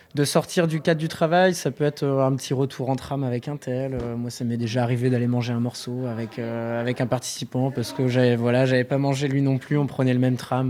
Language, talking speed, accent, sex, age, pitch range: French, 250 wpm, French, male, 20-39, 130-155 Hz